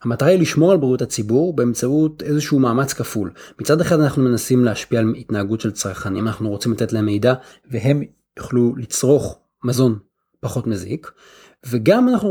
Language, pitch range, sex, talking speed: Hebrew, 110-155 Hz, male, 155 wpm